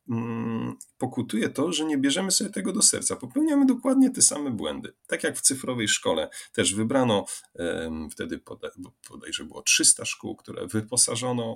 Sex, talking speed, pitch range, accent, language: male, 155 wpm, 110-145 Hz, native, Polish